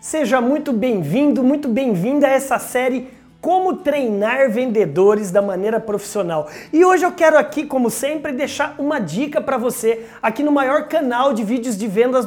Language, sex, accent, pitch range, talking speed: Portuguese, male, Brazilian, 225-285 Hz, 165 wpm